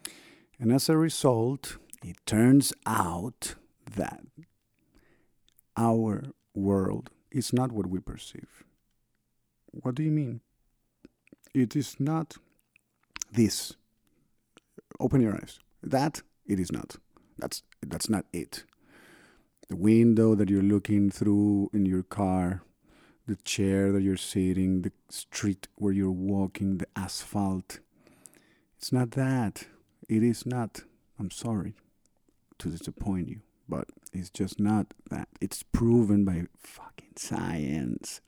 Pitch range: 95-125 Hz